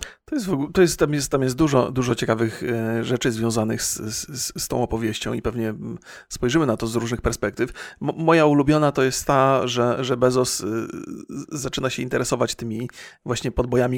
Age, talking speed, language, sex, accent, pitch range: 40-59, 175 wpm, Polish, male, native, 120-150 Hz